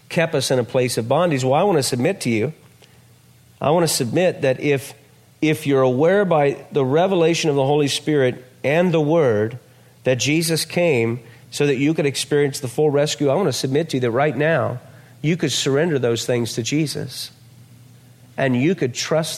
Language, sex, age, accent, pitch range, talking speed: English, male, 40-59, American, 125-160 Hz, 200 wpm